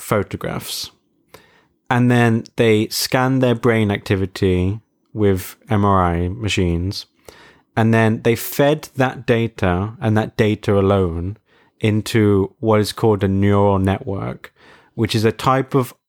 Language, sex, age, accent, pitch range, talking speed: English, male, 20-39, British, 95-110 Hz, 125 wpm